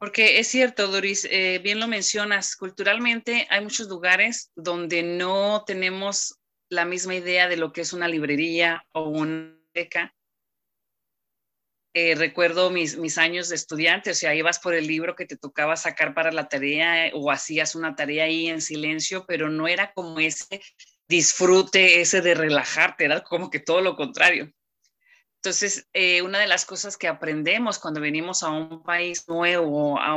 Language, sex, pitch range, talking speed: English, female, 160-195 Hz, 165 wpm